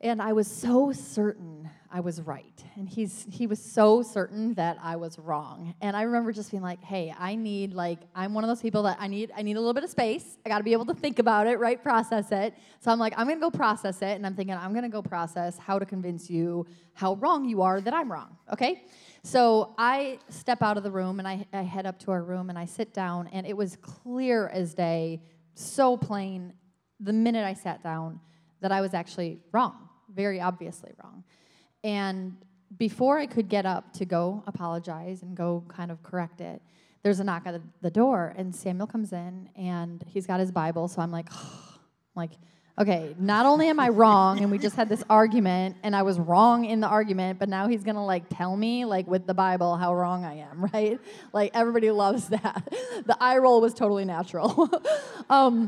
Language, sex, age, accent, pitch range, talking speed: English, female, 20-39, American, 180-225 Hz, 220 wpm